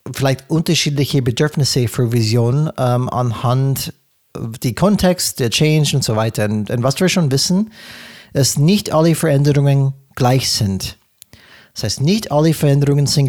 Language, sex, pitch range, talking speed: German, male, 125-155 Hz, 150 wpm